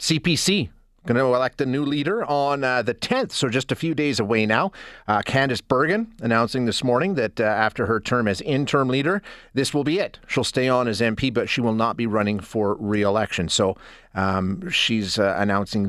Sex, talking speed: male, 200 wpm